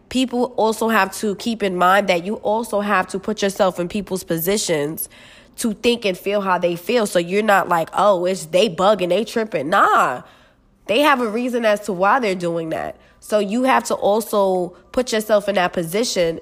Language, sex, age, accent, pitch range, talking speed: English, female, 20-39, American, 185-220 Hz, 200 wpm